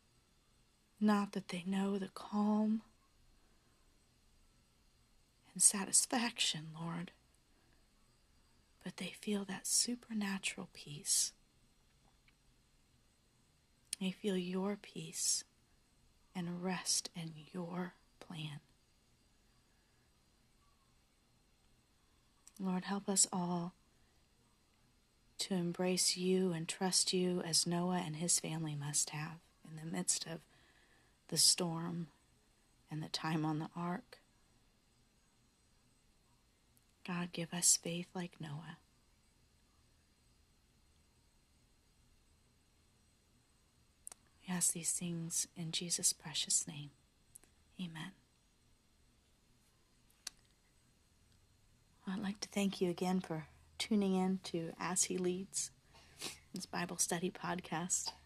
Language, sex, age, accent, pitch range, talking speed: English, female, 40-59, American, 160-190 Hz, 90 wpm